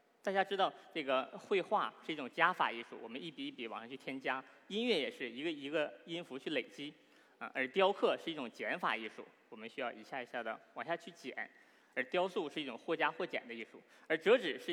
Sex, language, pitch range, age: male, Chinese, 160-235 Hz, 20-39